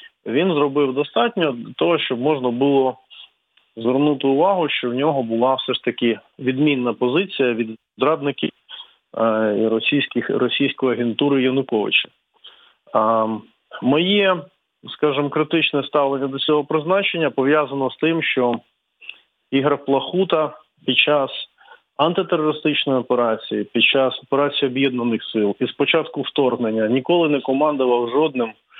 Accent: native